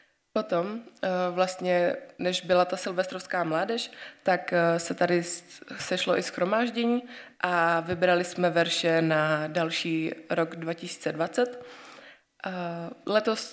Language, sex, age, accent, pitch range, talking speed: Czech, female, 20-39, native, 170-195 Hz, 100 wpm